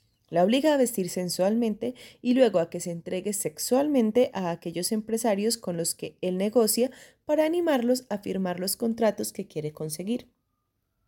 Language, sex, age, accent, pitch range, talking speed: Spanish, female, 20-39, Colombian, 175-240 Hz, 155 wpm